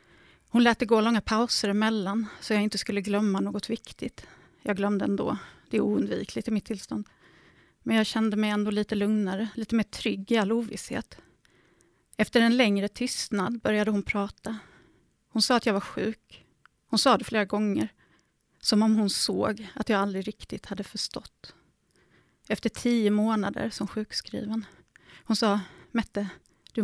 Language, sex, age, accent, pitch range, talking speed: Swedish, female, 30-49, native, 205-230 Hz, 165 wpm